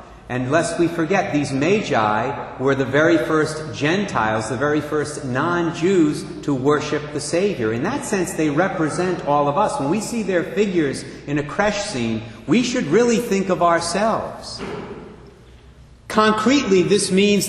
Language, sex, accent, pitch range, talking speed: English, male, American, 120-185 Hz, 155 wpm